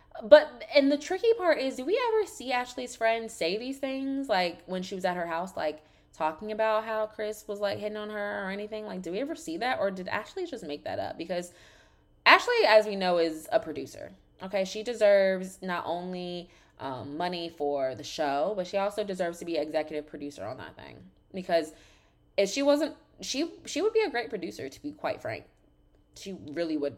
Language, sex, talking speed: English, female, 210 wpm